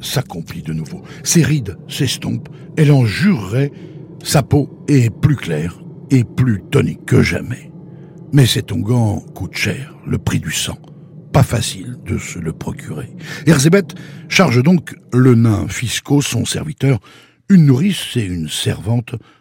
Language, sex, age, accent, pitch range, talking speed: French, male, 60-79, French, 115-155 Hz, 145 wpm